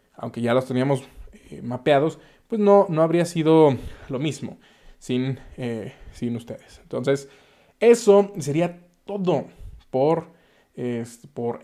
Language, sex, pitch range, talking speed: Spanish, male, 130-180 Hz, 120 wpm